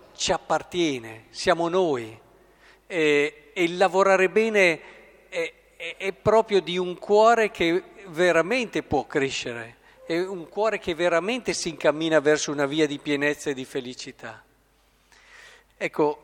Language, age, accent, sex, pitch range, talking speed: Italian, 50-69, native, male, 145-195 Hz, 130 wpm